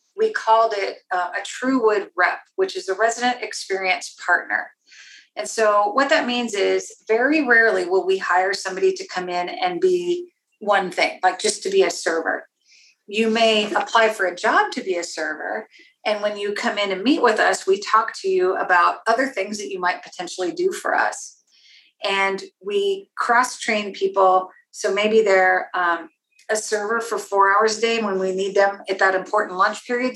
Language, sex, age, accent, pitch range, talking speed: English, female, 40-59, American, 190-245 Hz, 190 wpm